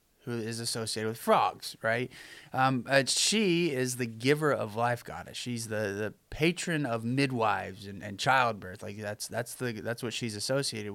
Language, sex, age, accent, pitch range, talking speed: English, male, 20-39, American, 110-150 Hz, 170 wpm